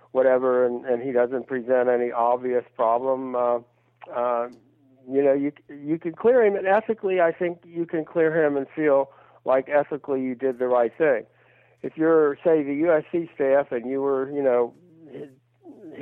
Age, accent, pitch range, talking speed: 50-69, American, 120-145 Hz, 175 wpm